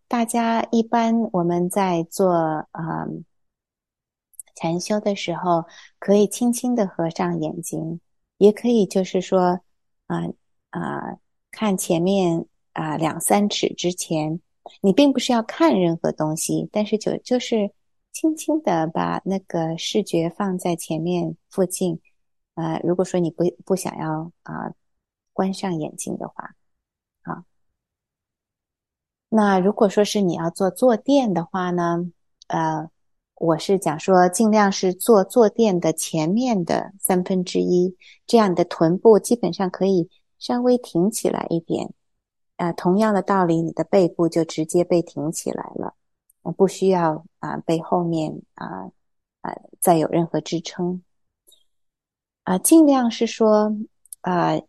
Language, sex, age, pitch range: English, female, 30-49, 170-210 Hz